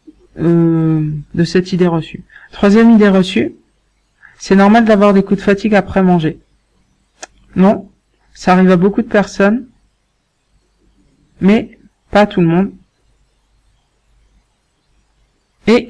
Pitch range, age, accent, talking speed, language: 185-210 Hz, 50-69, French, 115 wpm, French